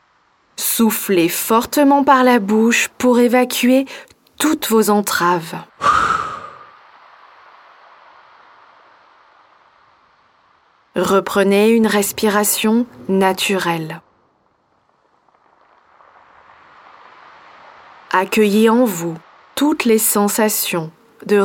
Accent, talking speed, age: French, 60 wpm, 20-39